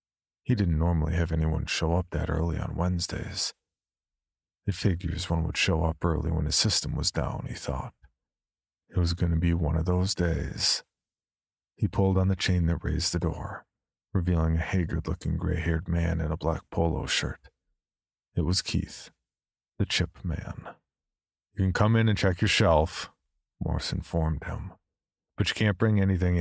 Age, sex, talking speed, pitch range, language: 40-59, male, 170 wpm, 80-95 Hz, English